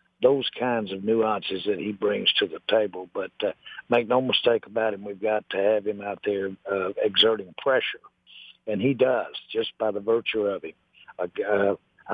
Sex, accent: male, American